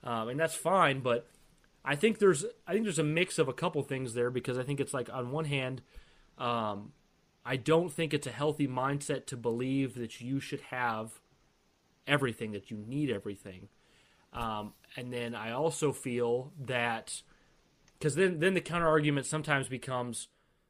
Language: English